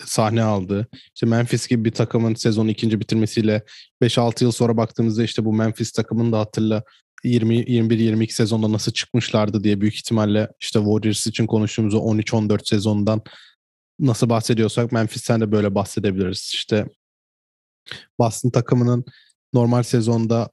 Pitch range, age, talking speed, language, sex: 110-120 Hz, 20-39, 130 wpm, Turkish, male